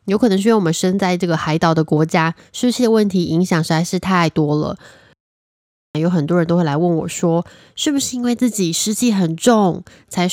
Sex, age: female, 20-39